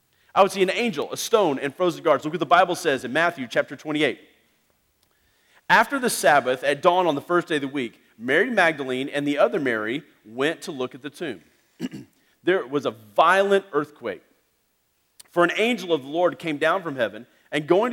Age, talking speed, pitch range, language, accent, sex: 40-59, 200 wpm, 150-200 Hz, English, American, male